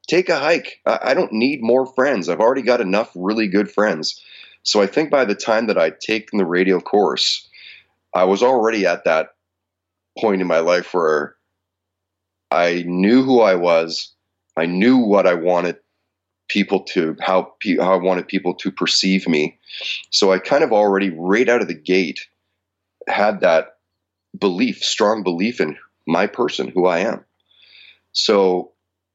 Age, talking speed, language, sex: 30-49, 165 wpm, English, male